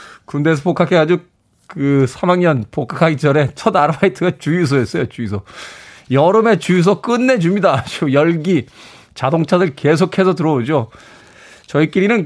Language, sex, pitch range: Korean, male, 125-175 Hz